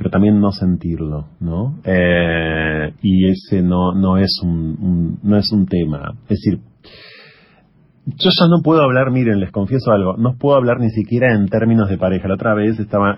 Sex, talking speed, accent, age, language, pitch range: male, 185 wpm, Argentinian, 40-59, Spanish, 90-115 Hz